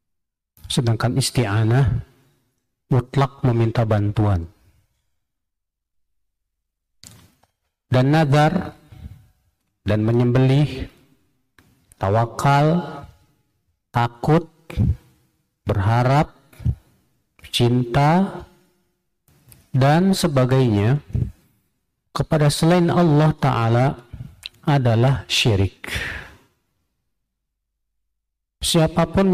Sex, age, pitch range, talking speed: male, 50-69, 100-135 Hz, 45 wpm